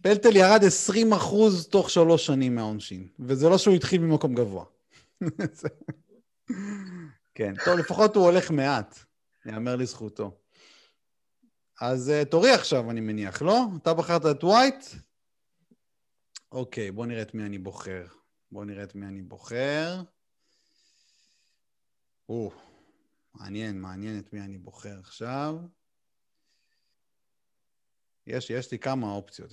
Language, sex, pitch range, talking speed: Hebrew, male, 105-170 Hz, 120 wpm